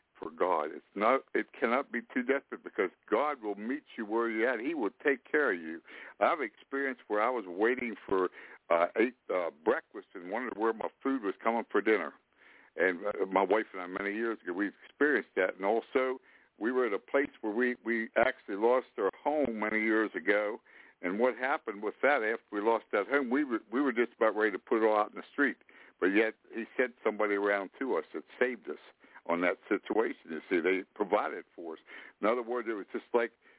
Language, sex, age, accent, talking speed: English, male, 60-79, American, 220 wpm